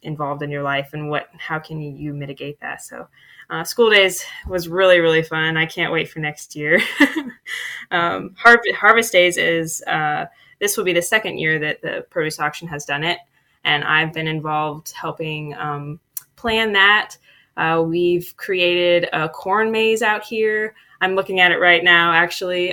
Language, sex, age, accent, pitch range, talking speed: English, female, 20-39, American, 155-180 Hz, 175 wpm